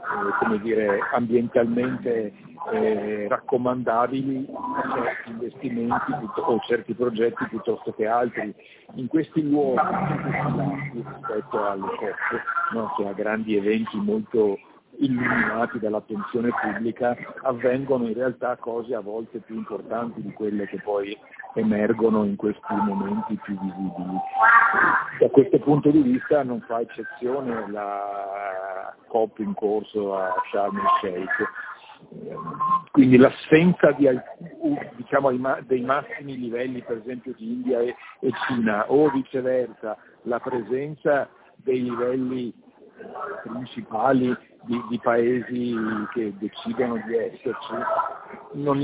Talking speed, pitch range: 110 wpm, 115-145 Hz